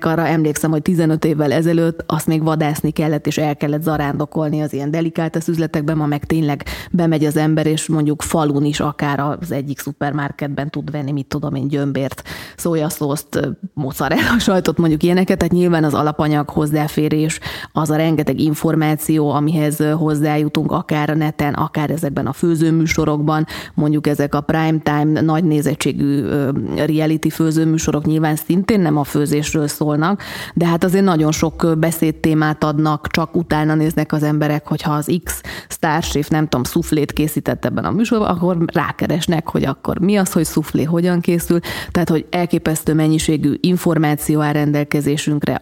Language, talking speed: Hungarian, 155 wpm